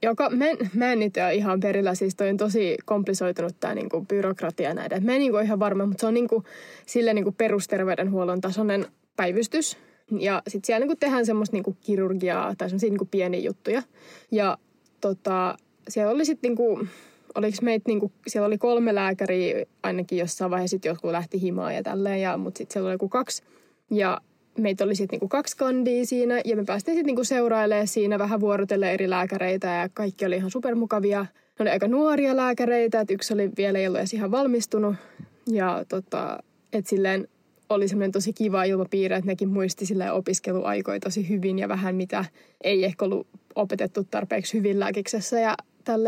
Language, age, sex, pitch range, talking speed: Finnish, 20-39, female, 190-230 Hz, 180 wpm